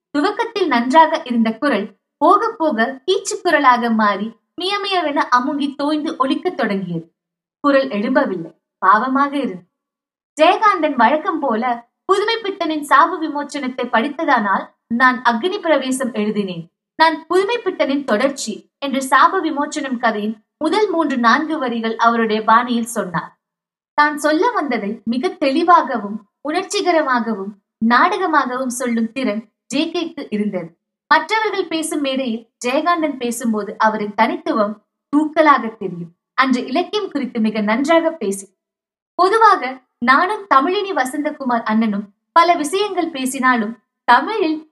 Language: Tamil